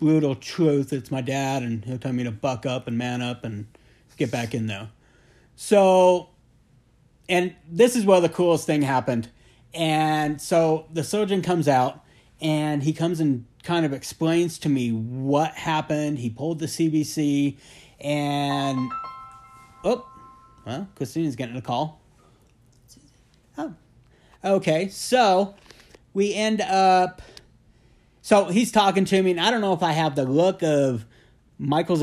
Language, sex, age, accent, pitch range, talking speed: English, male, 30-49, American, 130-175 Hz, 150 wpm